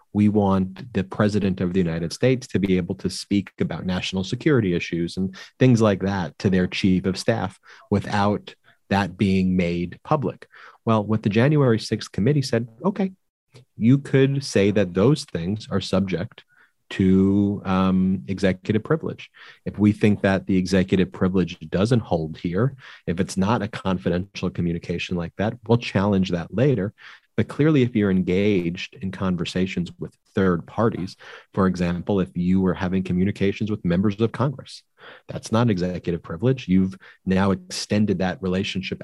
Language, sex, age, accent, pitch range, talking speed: English, male, 30-49, American, 95-115 Hz, 155 wpm